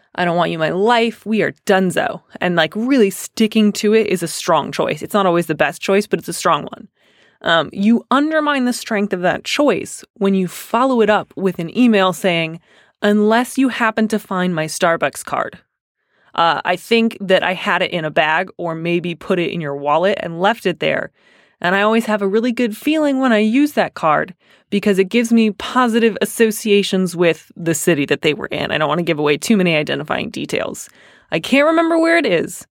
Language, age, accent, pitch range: English, 20-39, American, 175-225 Hz